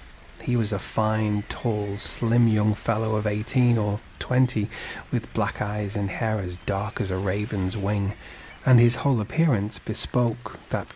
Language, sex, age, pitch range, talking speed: English, male, 40-59, 105-130 Hz, 160 wpm